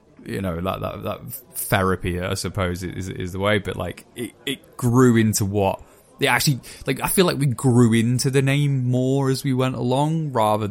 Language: English